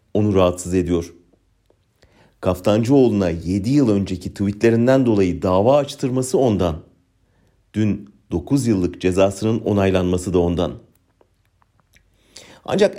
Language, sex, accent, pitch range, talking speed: German, male, Turkish, 95-125 Hz, 90 wpm